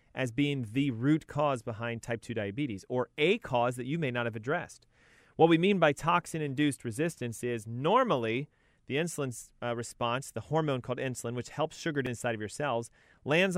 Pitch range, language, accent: 120-150 Hz, English, American